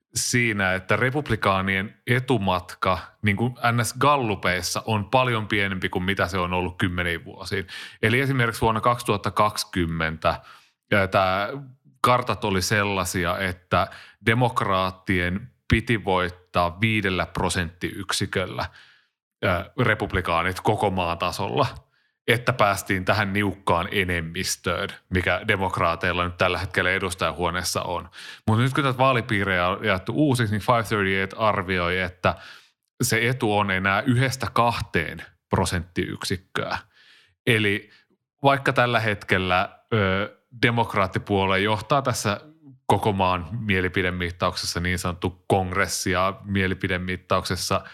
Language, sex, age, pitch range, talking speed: Finnish, male, 30-49, 90-115 Hz, 105 wpm